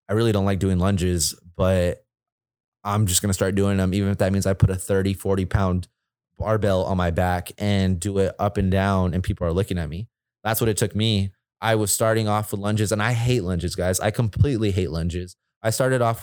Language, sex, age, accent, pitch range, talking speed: English, male, 20-39, American, 95-110 Hz, 235 wpm